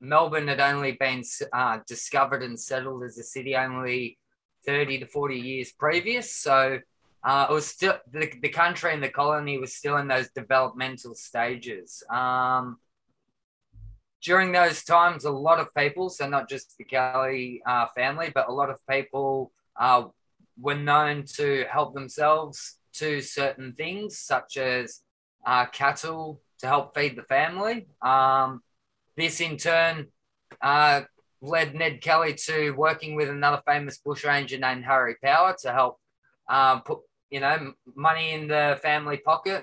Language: English